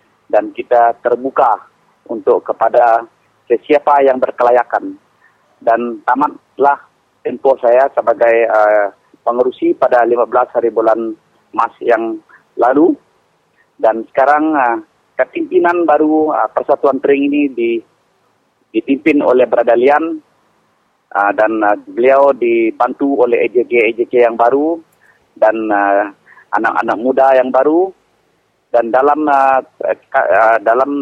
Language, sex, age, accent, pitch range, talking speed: English, male, 40-59, Indonesian, 120-150 Hz, 105 wpm